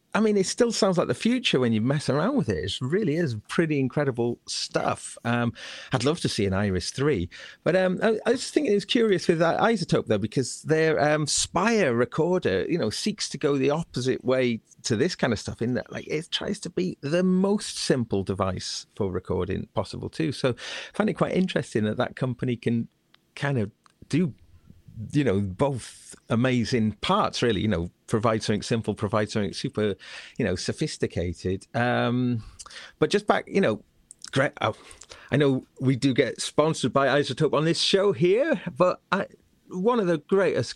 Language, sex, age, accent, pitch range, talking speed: English, male, 40-59, British, 115-180 Hz, 190 wpm